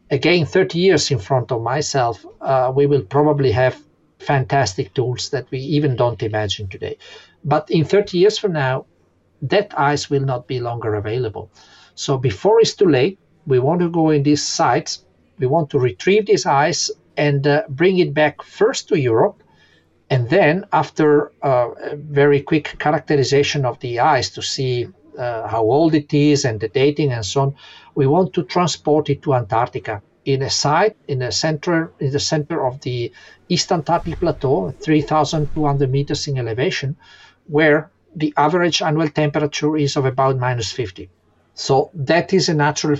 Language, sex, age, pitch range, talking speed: Greek, male, 50-69, 130-155 Hz, 170 wpm